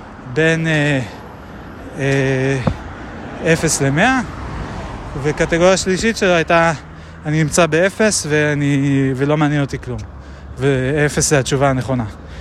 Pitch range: 100-165 Hz